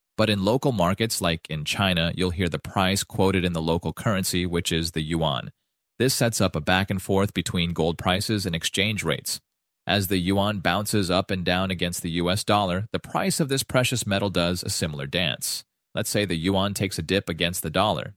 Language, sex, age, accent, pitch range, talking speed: English, male, 30-49, American, 85-105 Hz, 205 wpm